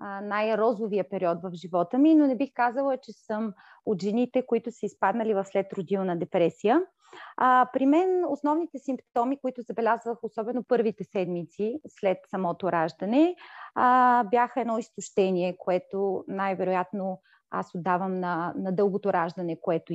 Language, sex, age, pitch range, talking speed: Bulgarian, female, 30-49, 195-255 Hz, 130 wpm